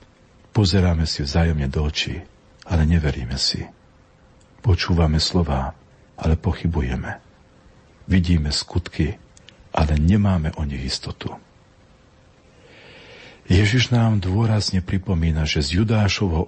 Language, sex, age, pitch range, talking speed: Slovak, male, 50-69, 80-95 Hz, 95 wpm